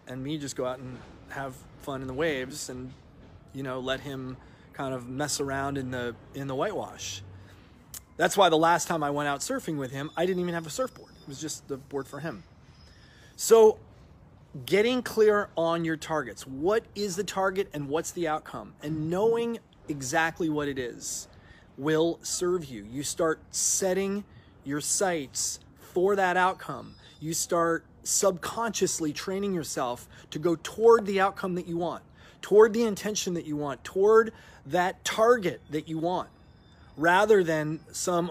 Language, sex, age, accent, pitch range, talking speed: English, male, 30-49, American, 130-185 Hz, 170 wpm